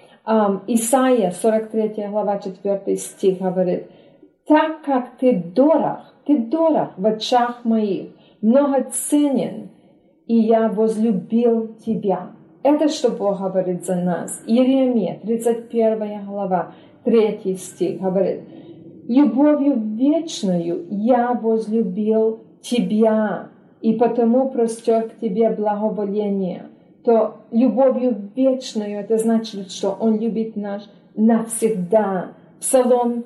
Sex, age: female, 40-59